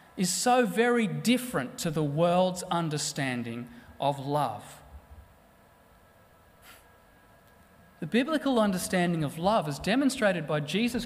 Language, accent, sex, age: English, Australian, male, 30-49